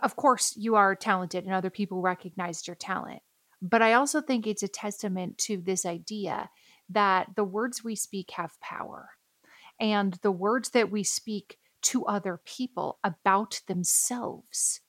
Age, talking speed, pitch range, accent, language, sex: 30-49, 155 wpm, 195-240 Hz, American, English, female